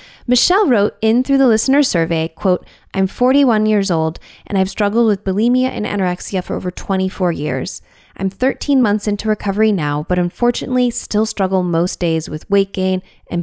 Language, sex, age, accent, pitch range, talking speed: English, female, 10-29, American, 175-235 Hz, 175 wpm